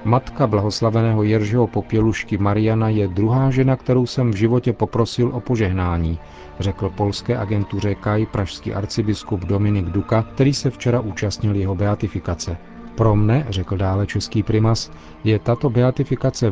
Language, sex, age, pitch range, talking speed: Czech, male, 40-59, 95-115 Hz, 140 wpm